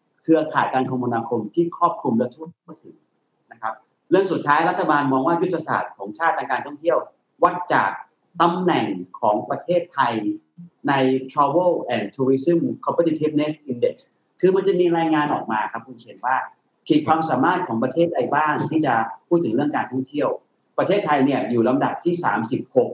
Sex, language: male, Thai